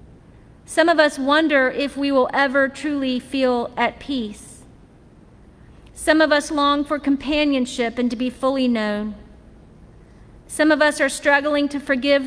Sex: female